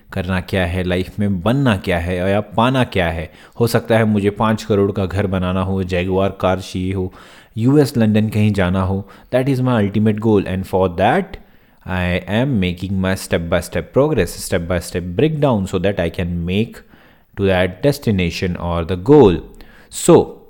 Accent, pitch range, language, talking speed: native, 95-110 Hz, Hindi, 185 wpm